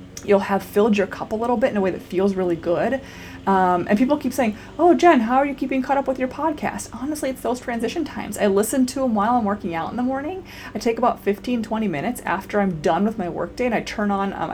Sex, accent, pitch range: female, American, 180-225 Hz